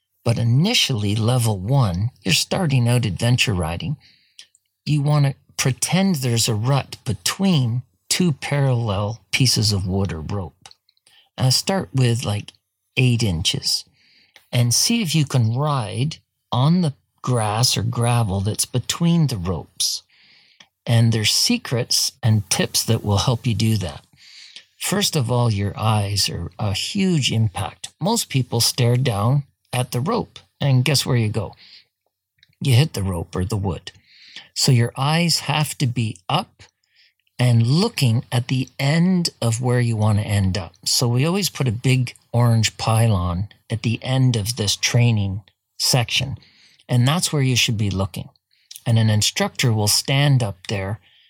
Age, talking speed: 50-69, 155 wpm